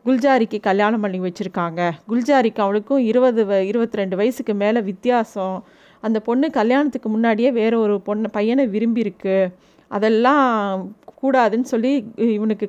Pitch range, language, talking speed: 210-260 Hz, Tamil, 130 wpm